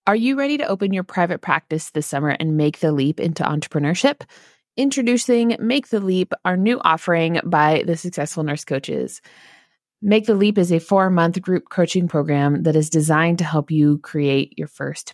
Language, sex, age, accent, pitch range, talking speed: English, female, 20-39, American, 155-200 Hz, 180 wpm